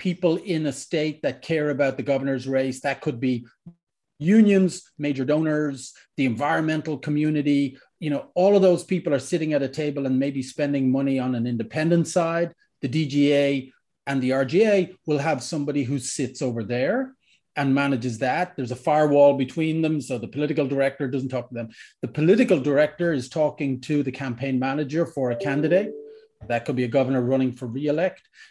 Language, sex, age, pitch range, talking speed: English, male, 40-59, 135-170 Hz, 180 wpm